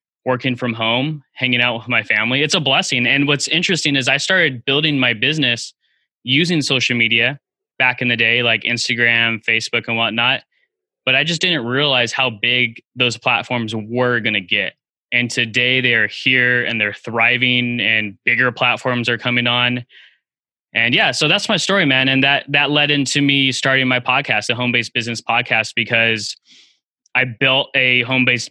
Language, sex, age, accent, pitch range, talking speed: English, male, 10-29, American, 120-140 Hz, 175 wpm